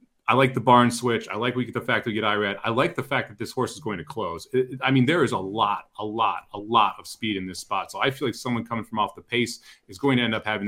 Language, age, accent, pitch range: English, 30-49, American, 110-145 Hz